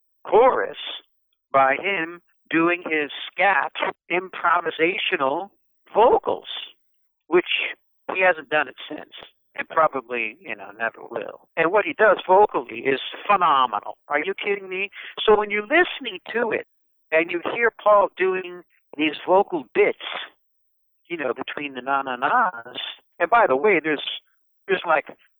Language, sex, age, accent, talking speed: English, male, 60-79, American, 140 wpm